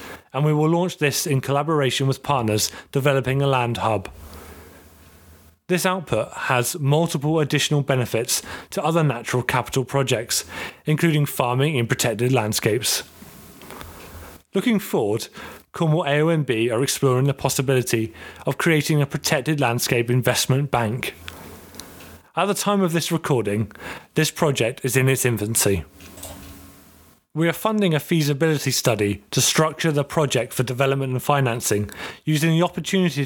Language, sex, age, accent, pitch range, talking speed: English, male, 30-49, British, 120-155 Hz, 130 wpm